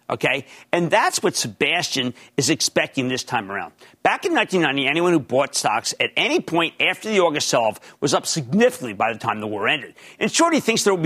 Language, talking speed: English, 210 wpm